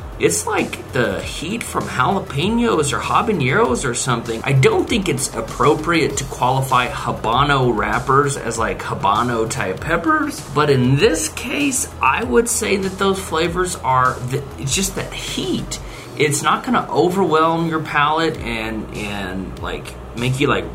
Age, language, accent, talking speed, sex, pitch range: 30-49, English, American, 150 wpm, male, 120-160 Hz